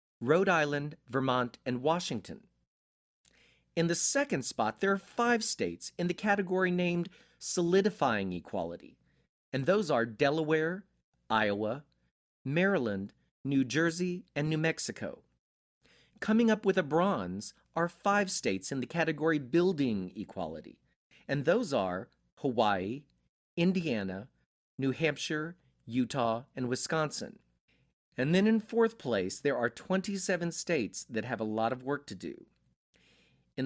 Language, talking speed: English, 125 wpm